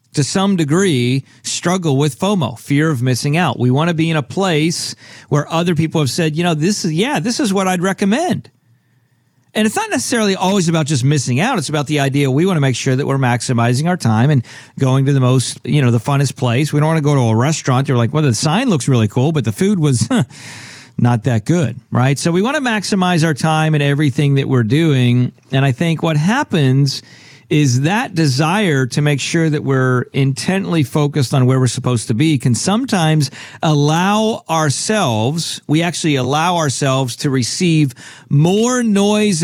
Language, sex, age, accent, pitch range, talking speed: English, male, 50-69, American, 130-175 Hz, 205 wpm